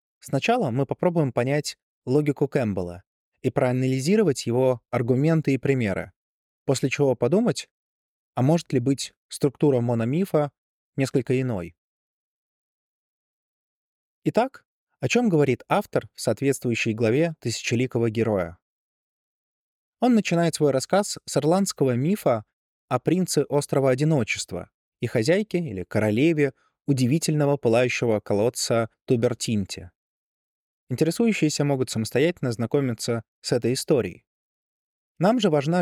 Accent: native